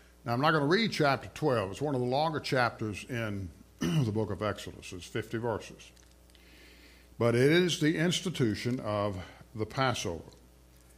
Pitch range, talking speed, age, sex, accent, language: 95-120 Hz, 165 wpm, 60-79, male, American, English